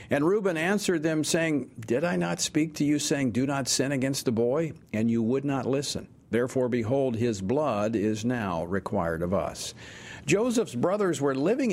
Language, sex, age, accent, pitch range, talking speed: English, male, 50-69, American, 125-170 Hz, 185 wpm